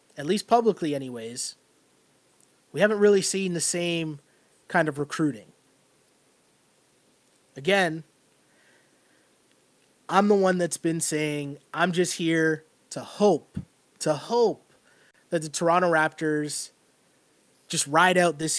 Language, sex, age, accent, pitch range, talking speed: English, male, 20-39, American, 150-185 Hz, 115 wpm